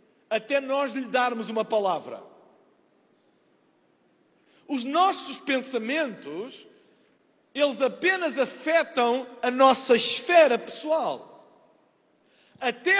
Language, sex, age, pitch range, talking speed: Portuguese, male, 50-69, 260-340 Hz, 80 wpm